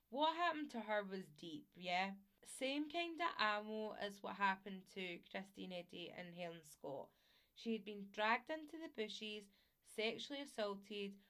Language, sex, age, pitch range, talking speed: English, female, 20-39, 185-225 Hz, 155 wpm